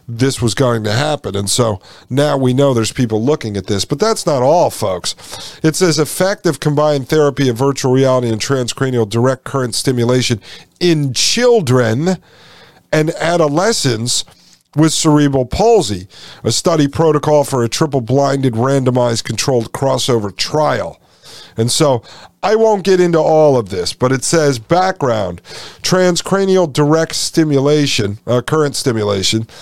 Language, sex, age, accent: English, male, 50-69, American